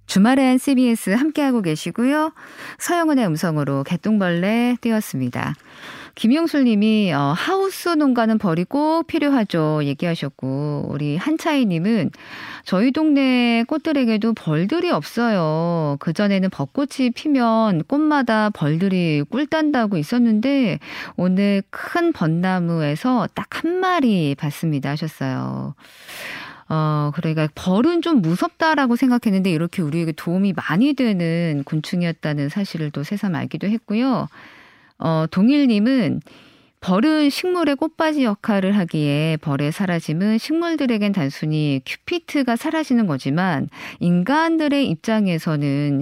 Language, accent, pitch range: Korean, native, 155-260 Hz